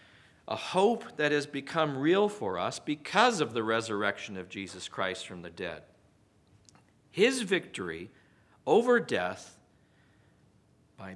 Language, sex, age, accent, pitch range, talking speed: English, male, 50-69, American, 115-185 Hz, 125 wpm